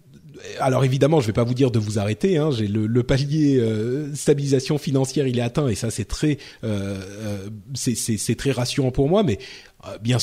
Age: 30-49